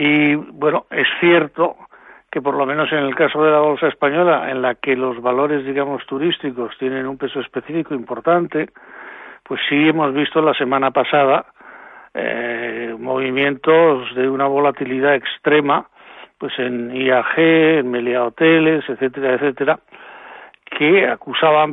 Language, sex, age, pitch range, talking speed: Spanish, male, 60-79, 135-160 Hz, 140 wpm